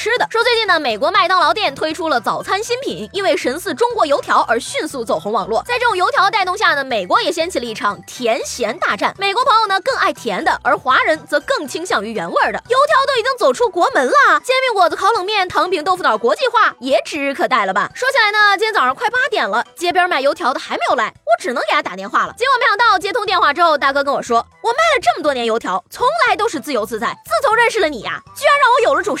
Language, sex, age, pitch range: Chinese, female, 20-39, 290-435 Hz